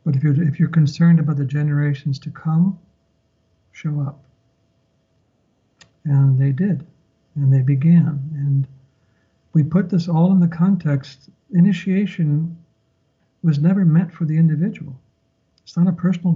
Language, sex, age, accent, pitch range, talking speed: English, male, 60-79, American, 135-165 Hz, 135 wpm